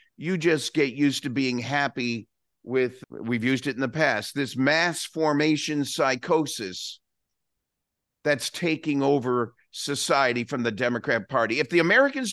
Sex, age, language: male, 50-69, English